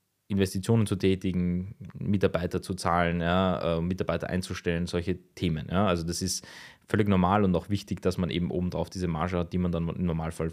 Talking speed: 190 wpm